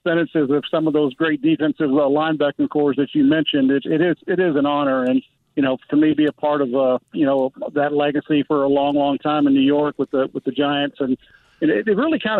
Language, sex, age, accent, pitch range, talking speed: English, male, 50-69, American, 145-165 Hz, 250 wpm